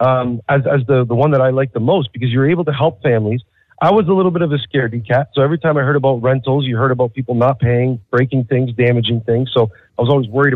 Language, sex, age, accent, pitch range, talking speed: English, male, 40-59, American, 115-140 Hz, 275 wpm